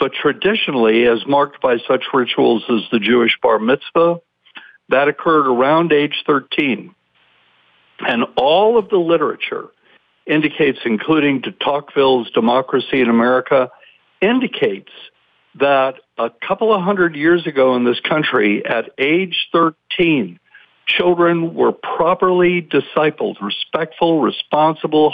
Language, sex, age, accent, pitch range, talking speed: English, male, 60-79, American, 130-175 Hz, 115 wpm